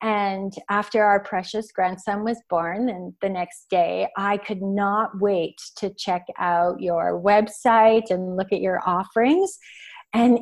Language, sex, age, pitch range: English, female, 30-49, 190-230 Hz